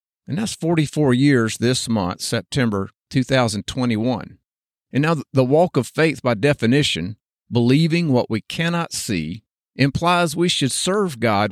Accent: American